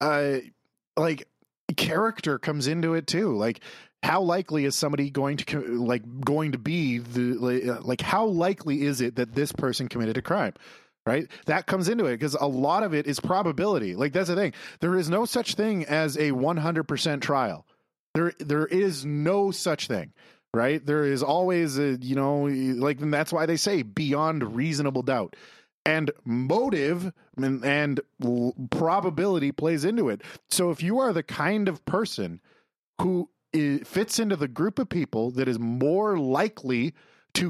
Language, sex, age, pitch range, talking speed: English, male, 30-49, 135-180 Hz, 170 wpm